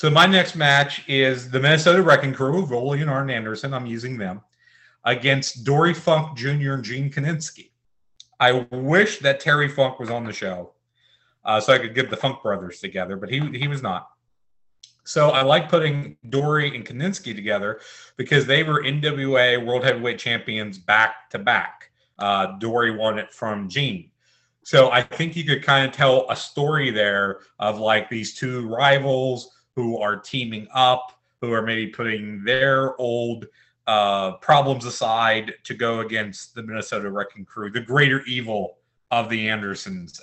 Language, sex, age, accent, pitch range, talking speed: English, male, 30-49, American, 115-140 Hz, 165 wpm